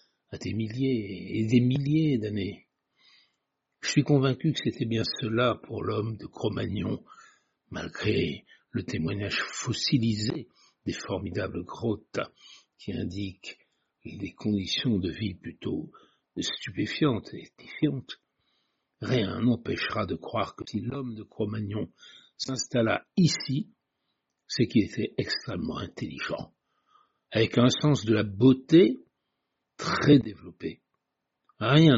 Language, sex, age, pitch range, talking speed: French, male, 60-79, 110-135 Hz, 115 wpm